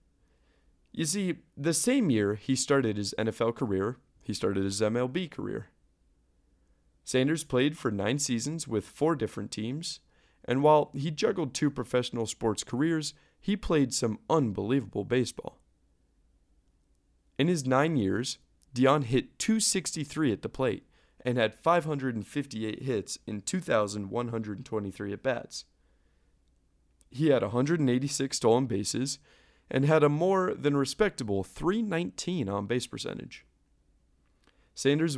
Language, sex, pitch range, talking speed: English, male, 100-145 Hz, 120 wpm